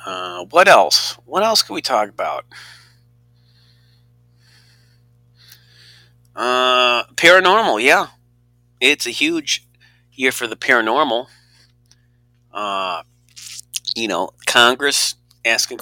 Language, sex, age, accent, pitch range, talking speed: English, male, 40-59, American, 115-120 Hz, 90 wpm